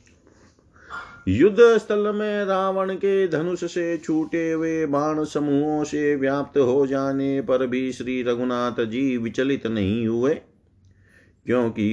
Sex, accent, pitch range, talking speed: male, native, 110-145 Hz, 120 wpm